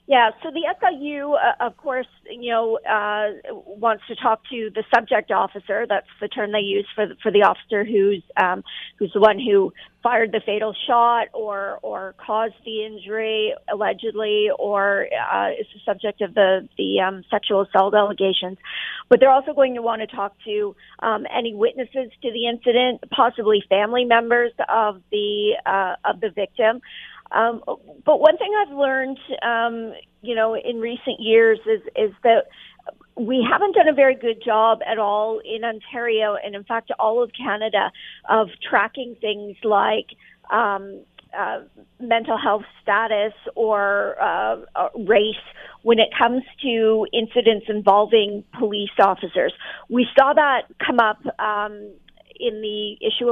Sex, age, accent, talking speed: female, 50-69, American, 160 wpm